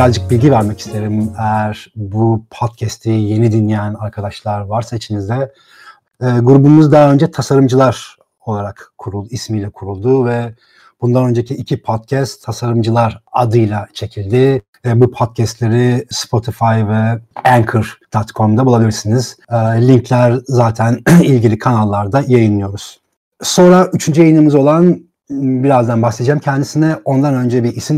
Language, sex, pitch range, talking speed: Turkish, male, 110-125 Hz, 115 wpm